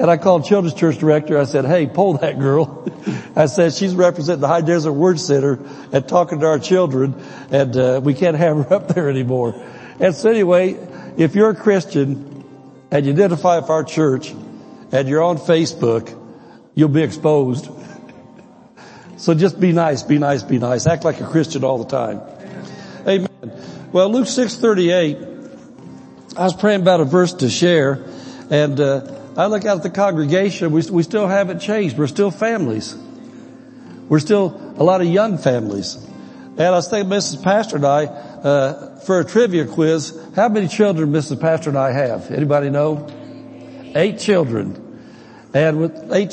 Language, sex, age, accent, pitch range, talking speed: English, male, 60-79, American, 140-185 Hz, 170 wpm